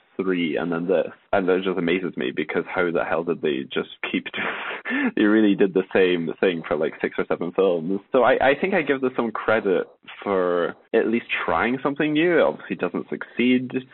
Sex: male